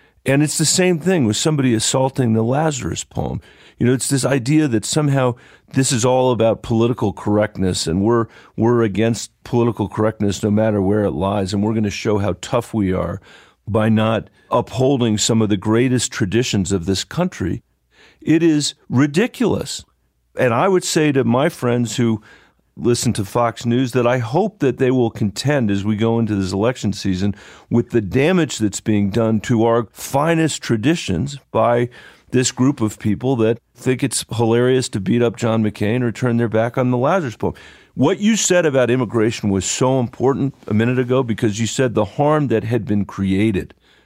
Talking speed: 185 wpm